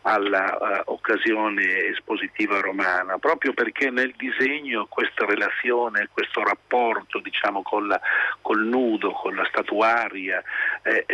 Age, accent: 50-69, native